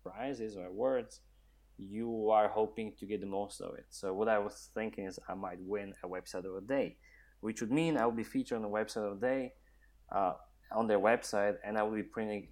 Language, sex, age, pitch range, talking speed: English, male, 20-39, 100-115 Hz, 230 wpm